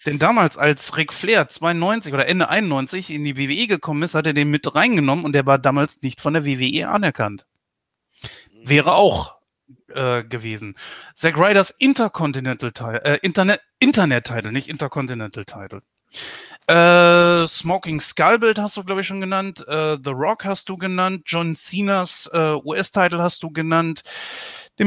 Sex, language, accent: male, German, German